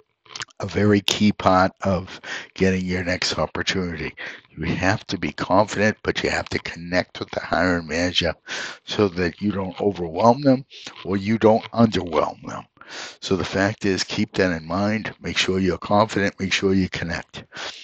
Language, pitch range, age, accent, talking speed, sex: English, 90-105 Hz, 60-79, American, 170 wpm, male